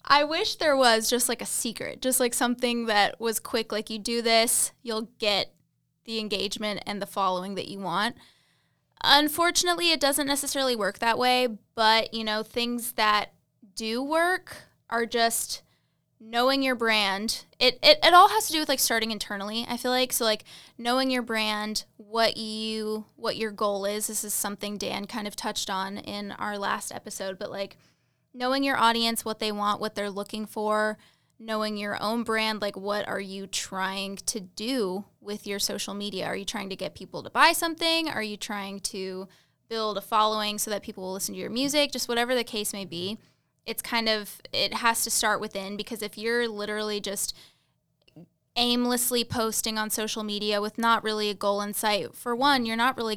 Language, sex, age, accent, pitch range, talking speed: English, female, 10-29, American, 205-240 Hz, 195 wpm